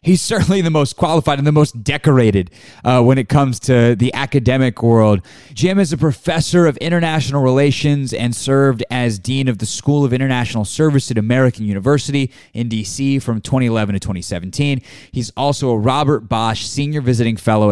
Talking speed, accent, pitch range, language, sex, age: 175 wpm, American, 110-145 Hz, English, male, 20-39